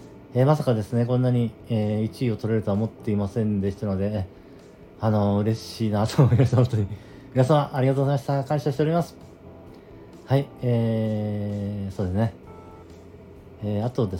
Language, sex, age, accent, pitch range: Japanese, male, 40-59, native, 100-130 Hz